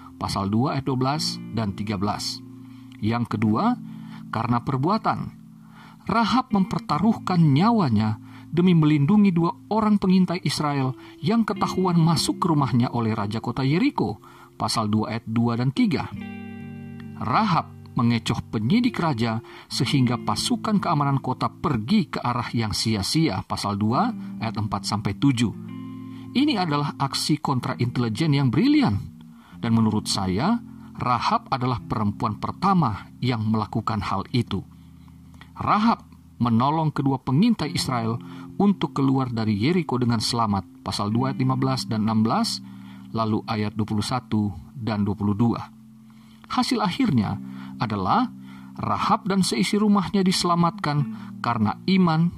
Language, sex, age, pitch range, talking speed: Indonesian, male, 50-69, 110-165 Hz, 120 wpm